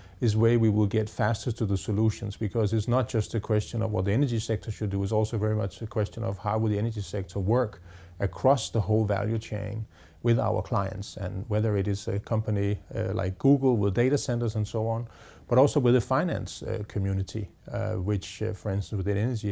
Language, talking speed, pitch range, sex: English, 220 wpm, 100-115 Hz, male